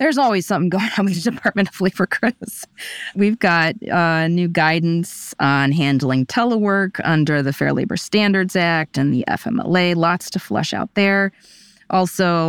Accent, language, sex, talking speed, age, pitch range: American, English, female, 165 wpm, 20-39, 150-185 Hz